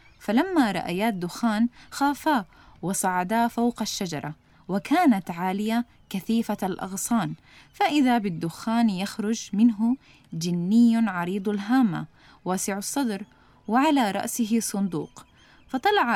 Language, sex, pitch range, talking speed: Arabic, female, 195-245 Hz, 90 wpm